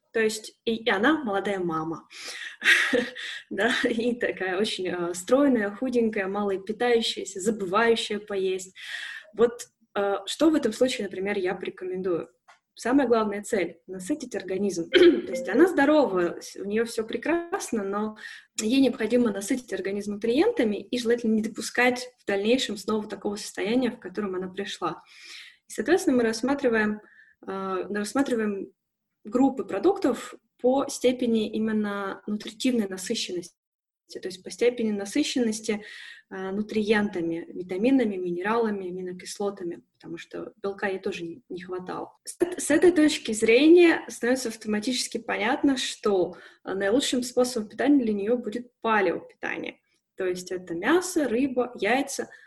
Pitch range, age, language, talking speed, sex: 200-255 Hz, 20-39, Russian, 130 wpm, female